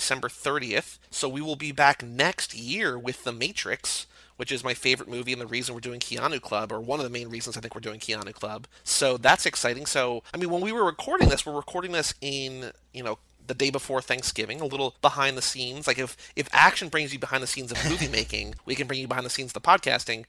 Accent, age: American, 30-49